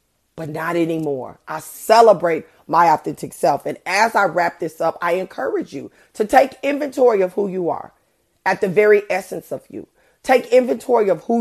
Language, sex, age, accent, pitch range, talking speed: English, female, 40-59, American, 160-210 Hz, 180 wpm